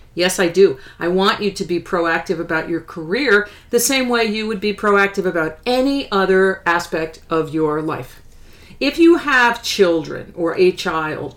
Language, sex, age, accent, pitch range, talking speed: English, female, 50-69, American, 165-200 Hz, 175 wpm